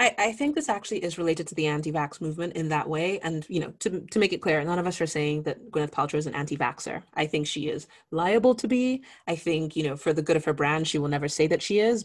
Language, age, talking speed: English, 30-49, 280 wpm